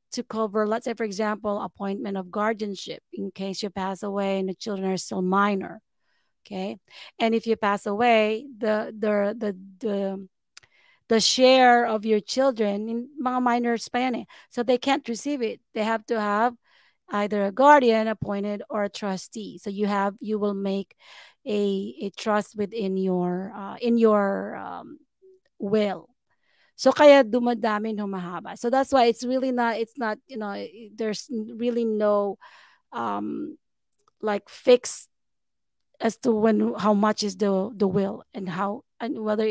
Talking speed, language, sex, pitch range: 155 wpm, English, female, 200-235 Hz